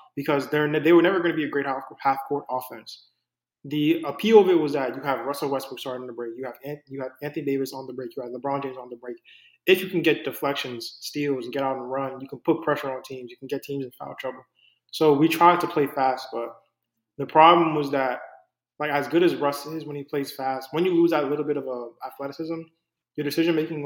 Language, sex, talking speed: English, male, 255 wpm